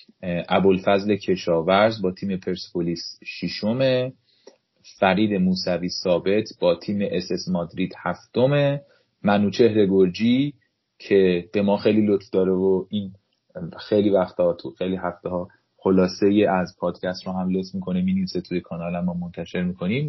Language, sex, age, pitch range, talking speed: Persian, male, 30-49, 95-125 Hz, 135 wpm